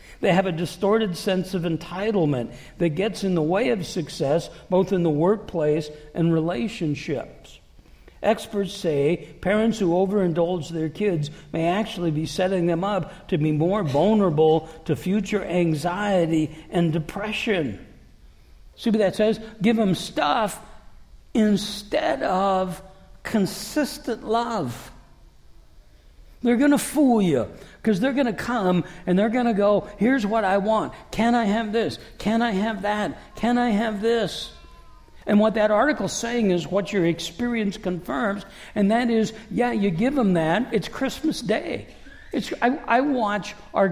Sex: male